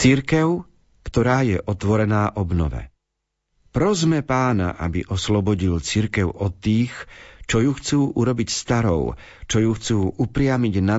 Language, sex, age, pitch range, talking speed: Slovak, male, 50-69, 100-125 Hz, 120 wpm